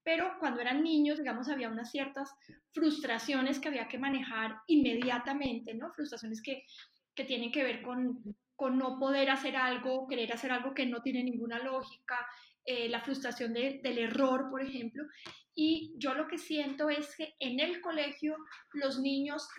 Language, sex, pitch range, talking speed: Spanish, female, 250-300 Hz, 170 wpm